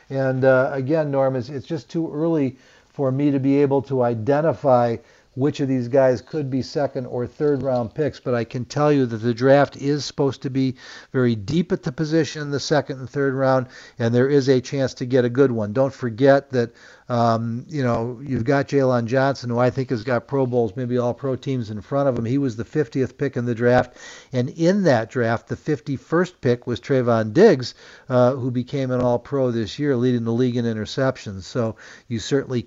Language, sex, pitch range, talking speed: English, male, 115-135 Hz, 215 wpm